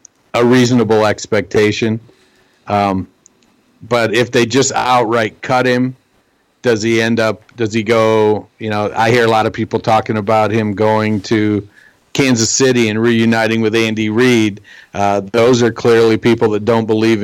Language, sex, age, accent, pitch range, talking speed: English, male, 50-69, American, 110-125 Hz, 155 wpm